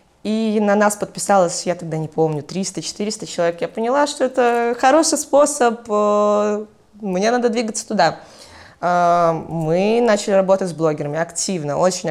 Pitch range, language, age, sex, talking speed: 170-220 Hz, Russian, 20-39, female, 135 wpm